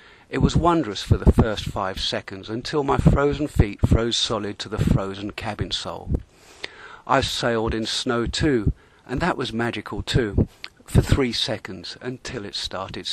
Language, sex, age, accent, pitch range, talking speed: English, male, 50-69, British, 105-130 Hz, 160 wpm